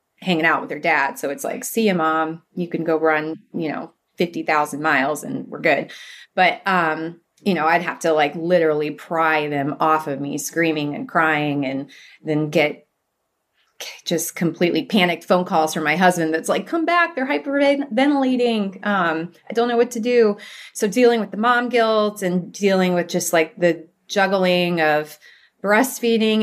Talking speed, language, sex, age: 175 wpm, English, female, 30-49